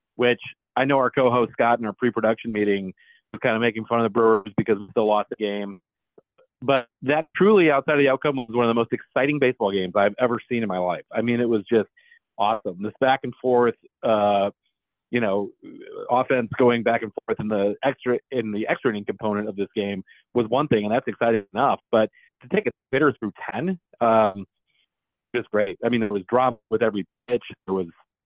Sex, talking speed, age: male, 215 wpm, 40-59